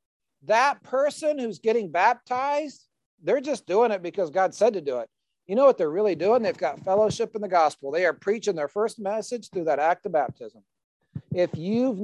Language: English